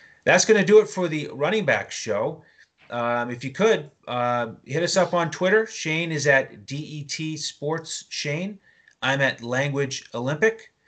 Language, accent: English, American